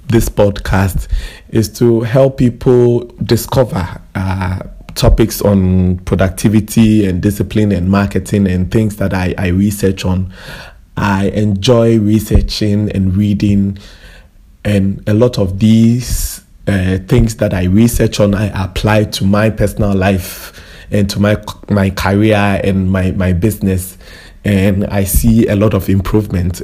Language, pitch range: English, 95-110 Hz